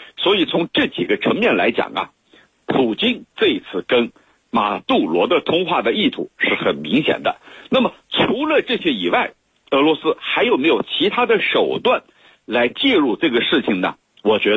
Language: Chinese